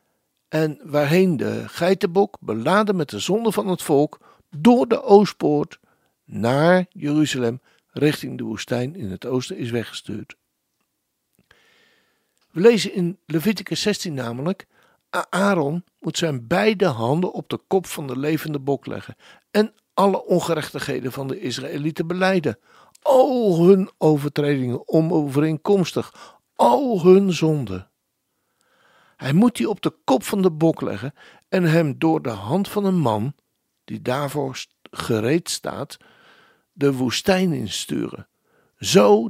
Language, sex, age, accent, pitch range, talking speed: Dutch, male, 60-79, Dutch, 130-190 Hz, 125 wpm